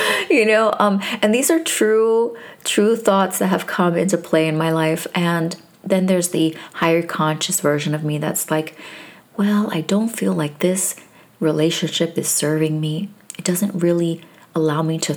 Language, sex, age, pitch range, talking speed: English, female, 20-39, 160-205 Hz, 175 wpm